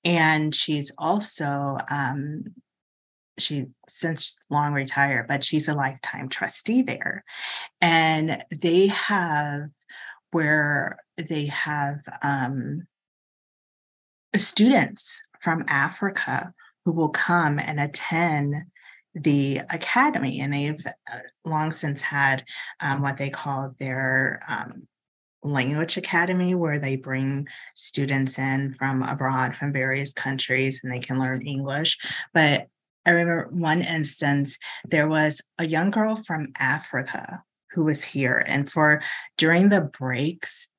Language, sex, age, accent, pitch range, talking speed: English, female, 30-49, American, 140-170 Hz, 115 wpm